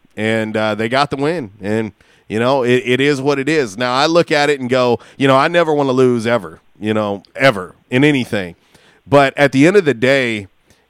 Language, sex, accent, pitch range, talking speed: English, male, American, 125-165 Hz, 230 wpm